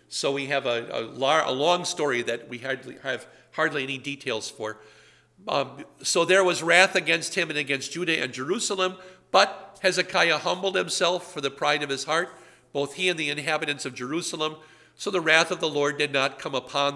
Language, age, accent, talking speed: English, 50-69, American, 200 wpm